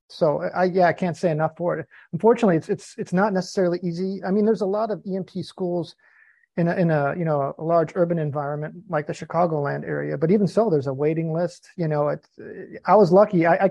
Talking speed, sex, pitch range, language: 225 wpm, male, 155-185 Hz, English